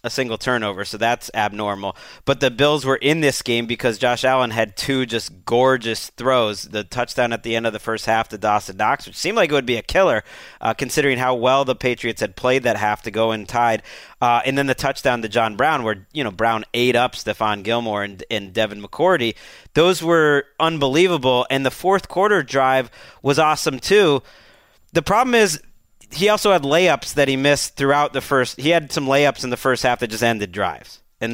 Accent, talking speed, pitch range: American, 215 wpm, 115-150 Hz